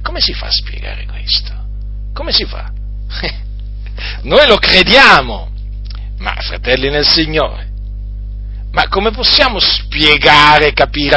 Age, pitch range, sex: 40-59, 100-150 Hz, male